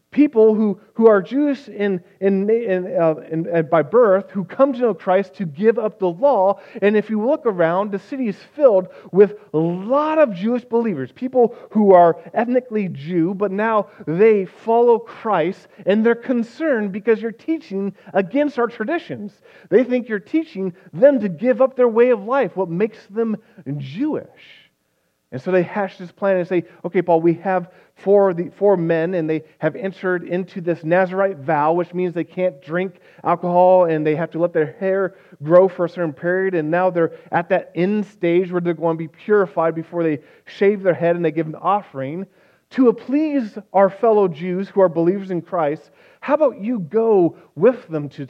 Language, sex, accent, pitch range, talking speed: English, male, American, 175-225 Hz, 190 wpm